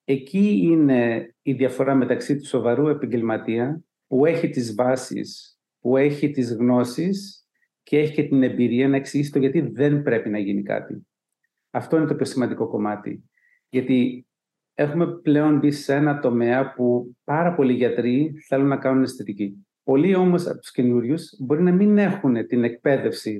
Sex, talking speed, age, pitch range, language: male, 160 wpm, 40-59, 125-165 Hz, Greek